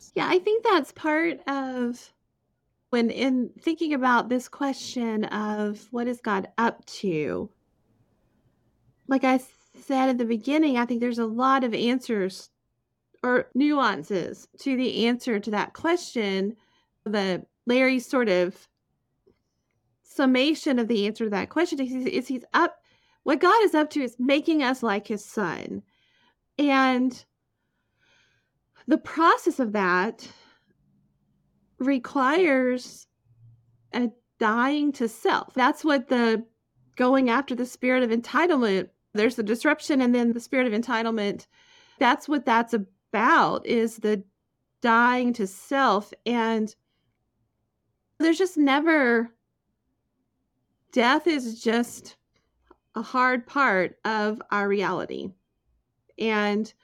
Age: 30-49